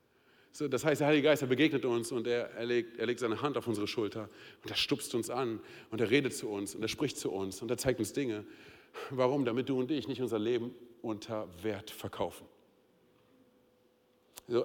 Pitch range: 120-150 Hz